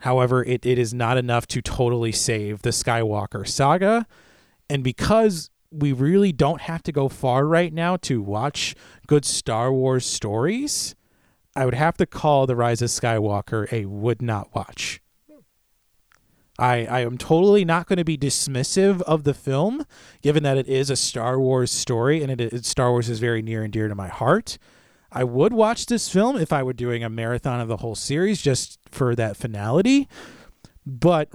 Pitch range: 115-145 Hz